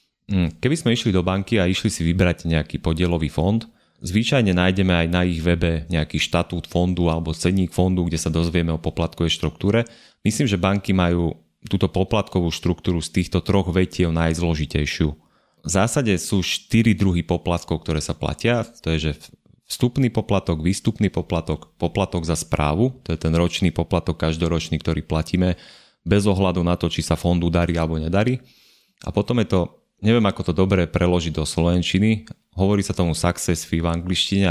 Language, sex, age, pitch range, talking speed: Slovak, male, 30-49, 80-95 Hz, 170 wpm